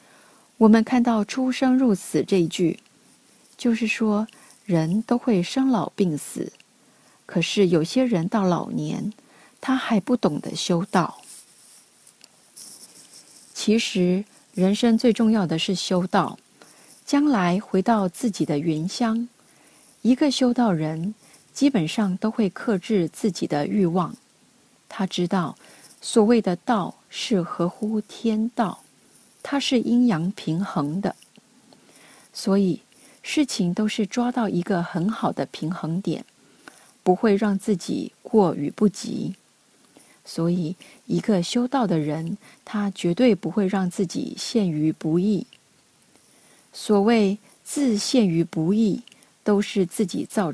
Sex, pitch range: female, 180-235 Hz